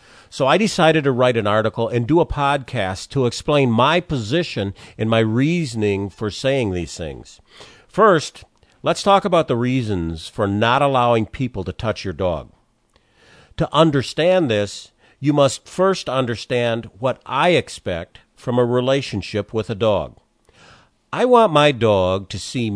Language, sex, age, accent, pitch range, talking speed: English, male, 50-69, American, 105-145 Hz, 155 wpm